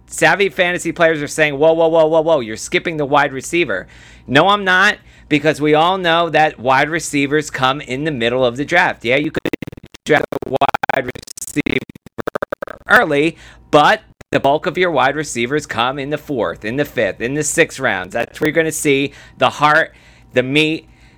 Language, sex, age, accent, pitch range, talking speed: English, male, 40-59, American, 130-160 Hz, 195 wpm